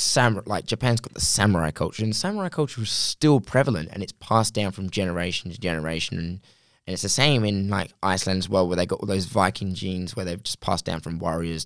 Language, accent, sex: English, British, male